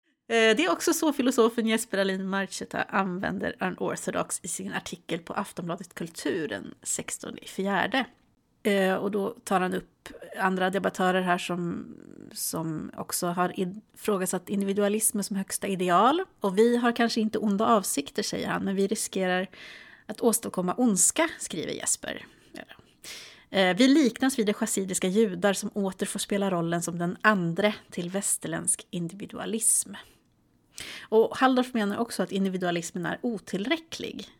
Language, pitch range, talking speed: Swedish, 185-230 Hz, 140 wpm